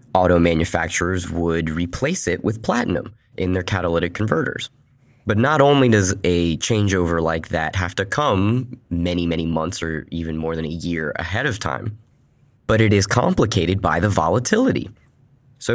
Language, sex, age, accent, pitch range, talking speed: English, male, 20-39, American, 85-115 Hz, 160 wpm